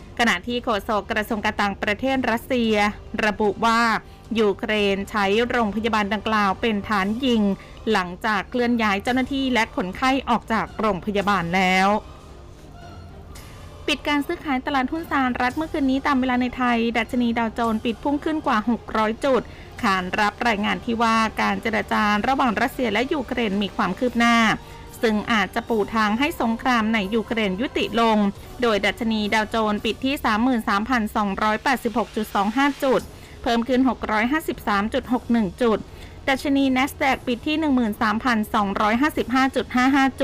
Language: Thai